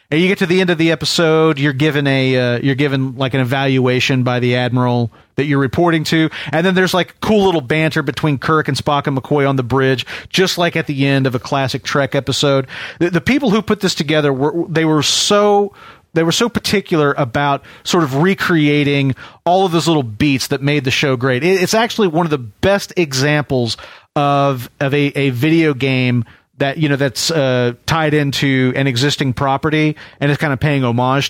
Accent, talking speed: American, 210 wpm